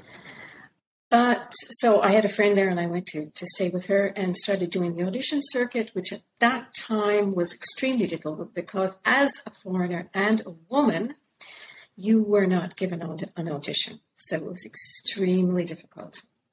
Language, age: English, 50-69